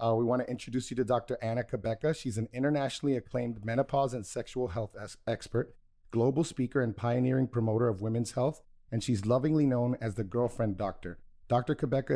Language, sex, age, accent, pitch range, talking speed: English, male, 30-49, American, 110-135 Hz, 185 wpm